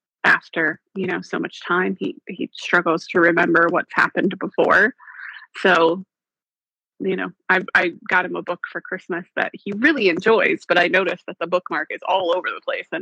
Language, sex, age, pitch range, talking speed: English, female, 30-49, 180-235 Hz, 190 wpm